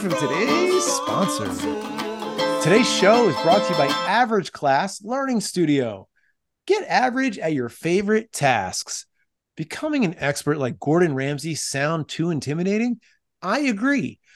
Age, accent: 30-49, American